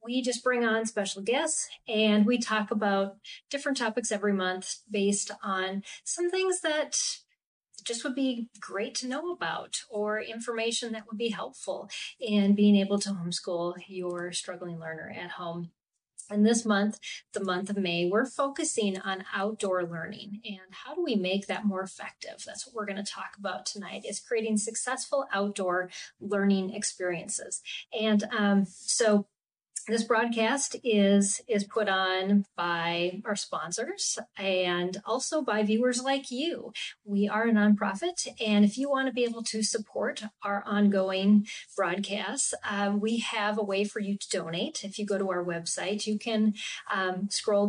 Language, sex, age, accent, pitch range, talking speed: English, female, 30-49, American, 190-225 Hz, 160 wpm